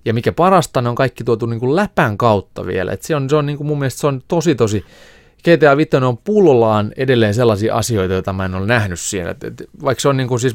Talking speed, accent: 235 wpm, native